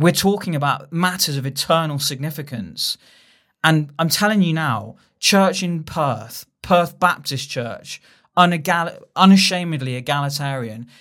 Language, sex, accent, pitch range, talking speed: English, male, British, 125-155 Hz, 110 wpm